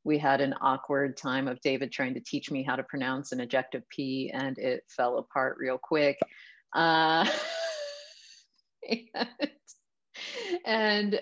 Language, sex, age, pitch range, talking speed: English, female, 30-49, 135-160 Hz, 140 wpm